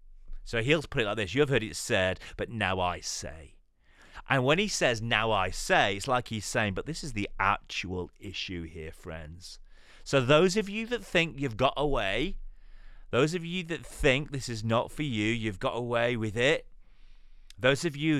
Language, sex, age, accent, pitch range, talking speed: English, male, 30-49, British, 95-145 Hz, 200 wpm